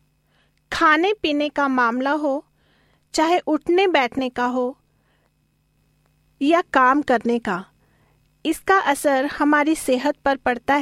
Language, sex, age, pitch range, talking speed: Hindi, female, 40-59, 250-315 Hz, 110 wpm